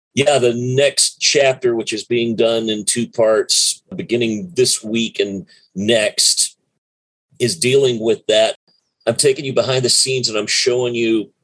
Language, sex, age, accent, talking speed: English, male, 40-59, American, 155 wpm